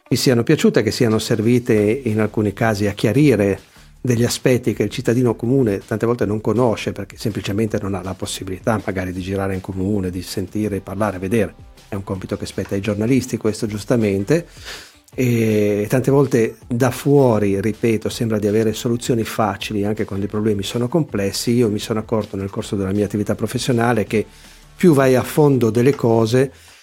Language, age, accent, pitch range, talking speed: Italian, 40-59, native, 100-125 Hz, 175 wpm